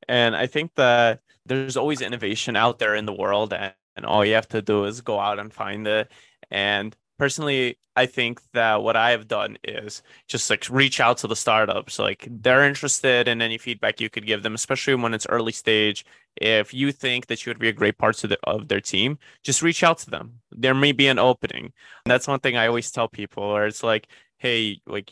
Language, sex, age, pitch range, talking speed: English, male, 20-39, 115-130 Hz, 225 wpm